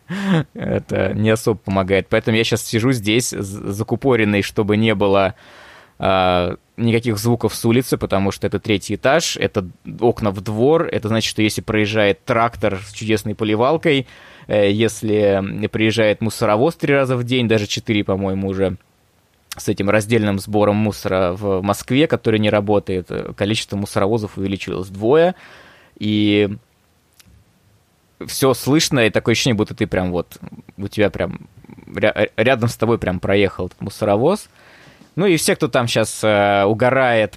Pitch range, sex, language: 100-120 Hz, male, Russian